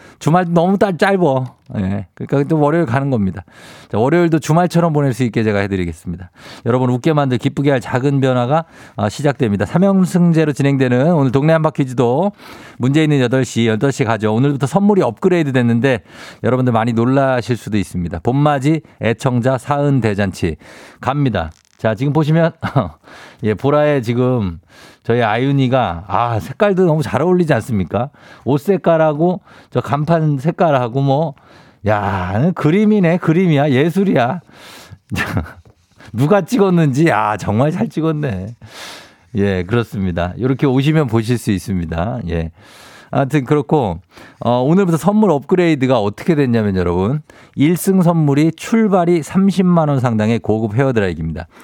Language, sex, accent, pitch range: Korean, male, native, 110-160 Hz